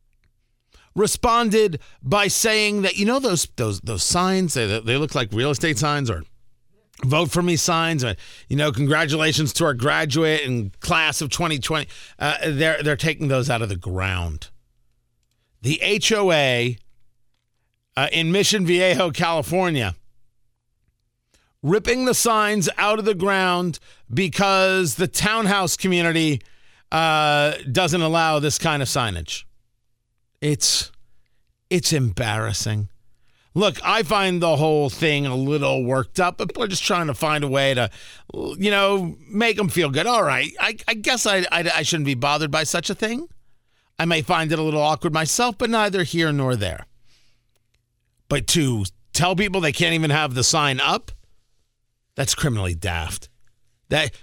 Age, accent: 50-69, American